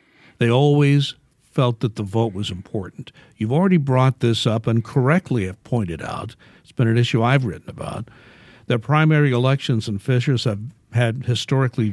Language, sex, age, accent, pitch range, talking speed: English, male, 60-79, American, 115-135 Hz, 165 wpm